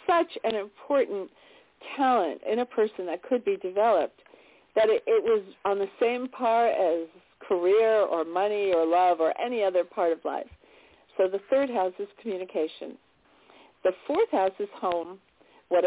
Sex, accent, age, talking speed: female, American, 50-69, 165 wpm